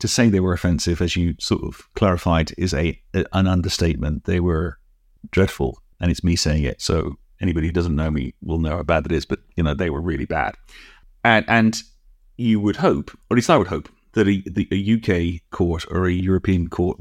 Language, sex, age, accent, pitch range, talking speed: English, male, 30-49, British, 85-105 Hz, 220 wpm